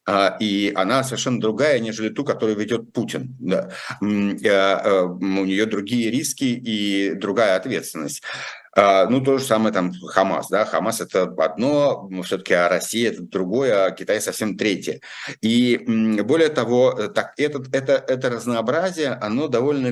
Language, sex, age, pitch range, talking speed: Russian, male, 50-69, 100-120 Hz, 150 wpm